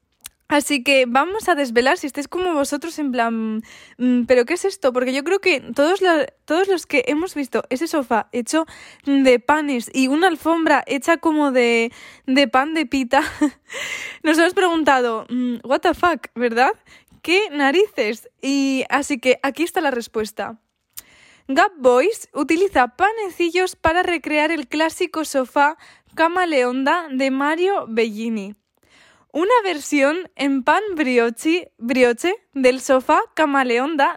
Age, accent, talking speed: 20-39, Spanish, 140 wpm